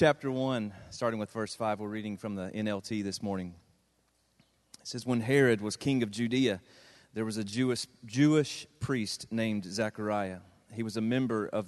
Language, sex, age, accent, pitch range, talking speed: English, male, 30-49, American, 100-120 Hz, 175 wpm